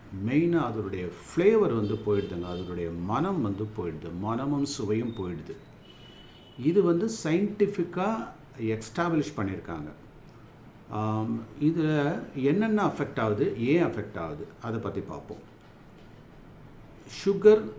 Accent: native